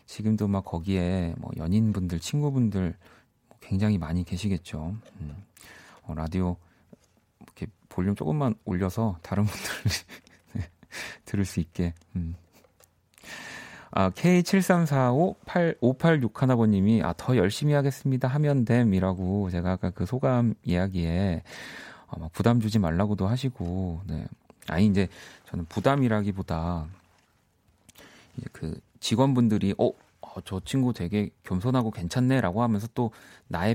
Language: Korean